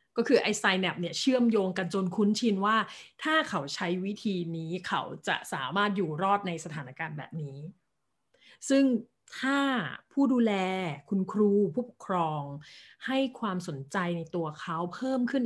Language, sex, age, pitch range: Thai, female, 30-49, 165-210 Hz